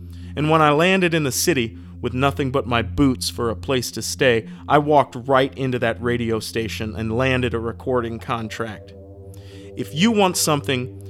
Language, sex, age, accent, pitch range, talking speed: English, male, 40-59, American, 110-140 Hz, 180 wpm